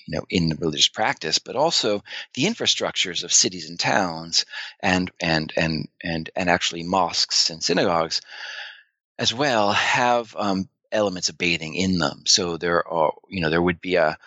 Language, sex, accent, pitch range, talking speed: English, male, American, 85-120 Hz, 170 wpm